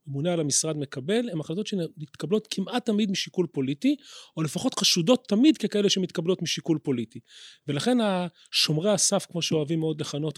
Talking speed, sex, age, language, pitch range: 150 wpm, male, 30-49, Hebrew, 155-215 Hz